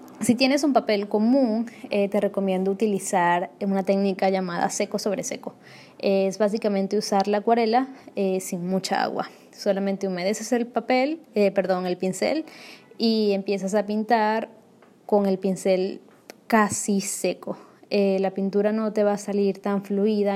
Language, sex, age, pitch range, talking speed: Spanish, female, 20-39, 195-225 Hz, 150 wpm